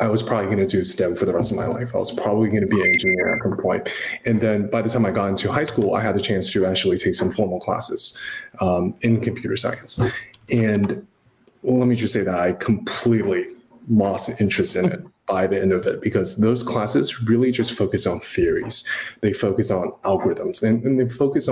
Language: English